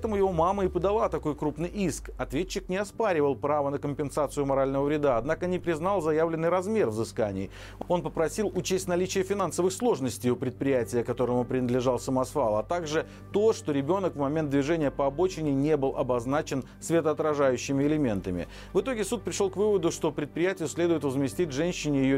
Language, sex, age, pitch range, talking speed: Russian, male, 40-59, 135-175 Hz, 160 wpm